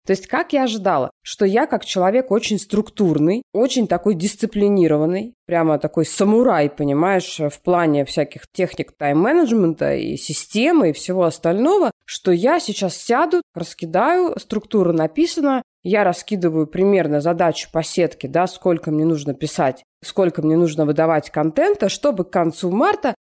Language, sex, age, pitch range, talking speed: Russian, female, 20-39, 170-230 Hz, 140 wpm